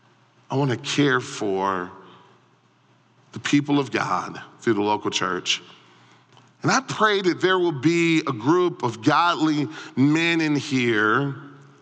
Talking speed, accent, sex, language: 135 wpm, American, male, English